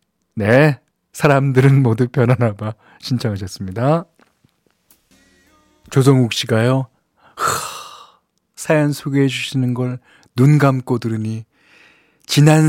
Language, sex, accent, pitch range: Korean, male, native, 115-170 Hz